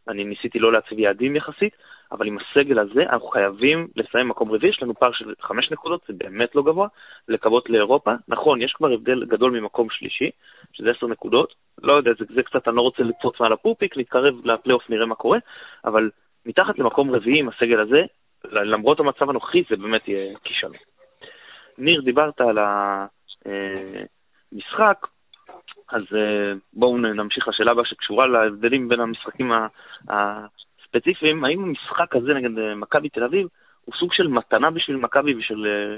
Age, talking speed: 20-39, 160 wpm